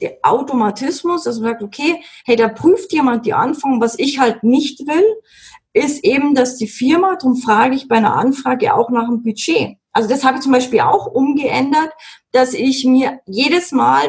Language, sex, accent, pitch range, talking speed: German, female, German, 235-335 Hz, 190 wpm